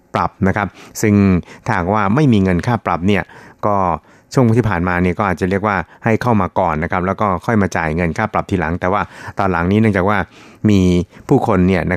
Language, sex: Thai, male